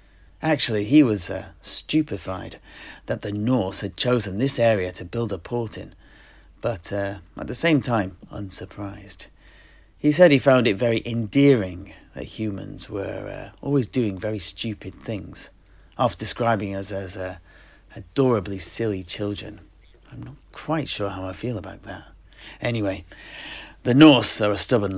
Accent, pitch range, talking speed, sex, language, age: British, 90-115 Hz, 150 wpm, male, English, 30-49